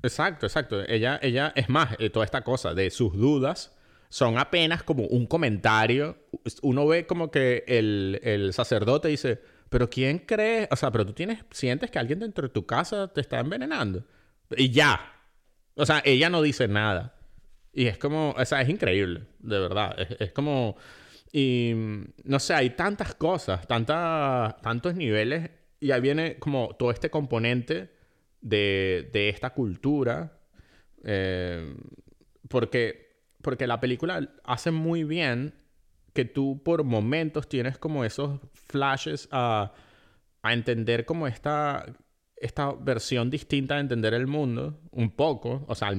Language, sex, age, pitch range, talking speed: Spanish, male, 30-49, 110-145 Hz, 155 wpm